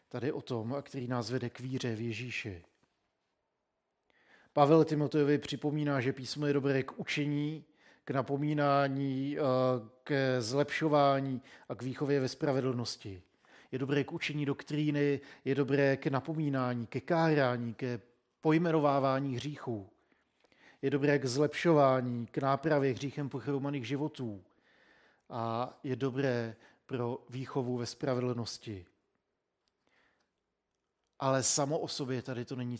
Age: 50-69